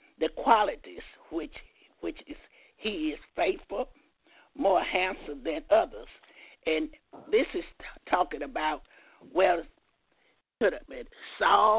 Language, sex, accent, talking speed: English, male, American, 100 wpm